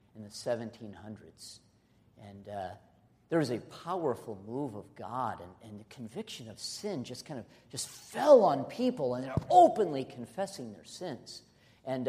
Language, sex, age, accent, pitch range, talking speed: English, male, 50-69, American, 115-150 Hz, 160 wpm